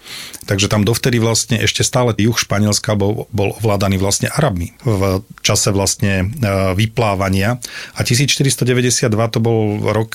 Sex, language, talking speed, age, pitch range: male, Slovak, 125 wpm, 40-59, 100-115 Hz